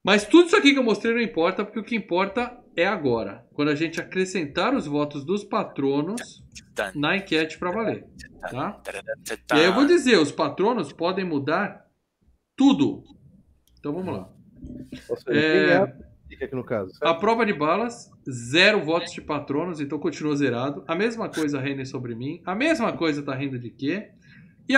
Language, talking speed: Portuguese, 160 wpm